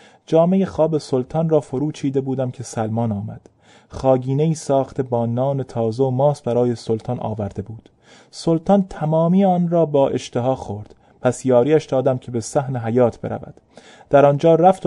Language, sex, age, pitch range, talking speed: Persian, male, 30-49, 120-165 Hz, 155 wpm